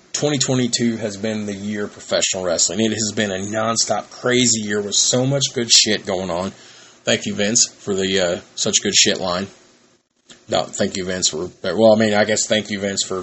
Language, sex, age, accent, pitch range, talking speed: English, male, 30-49, American, 95-115 Hz, 210 wpm